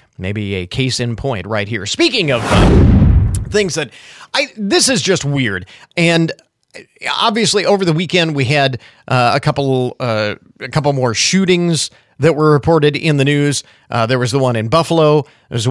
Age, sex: 40-59, male